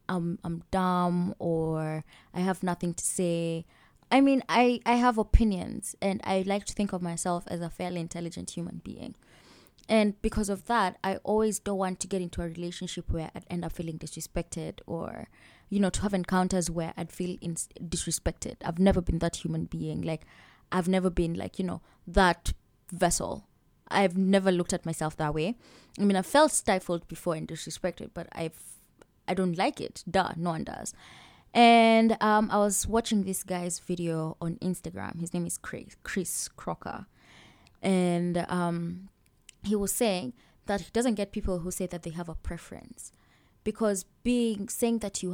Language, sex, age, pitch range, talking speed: English, female, 20-39, 170-210 Hz, 180 wpm